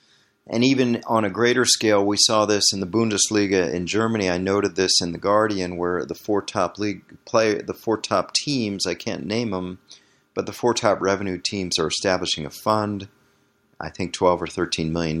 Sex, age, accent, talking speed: male, 40-59, American, 195 wpm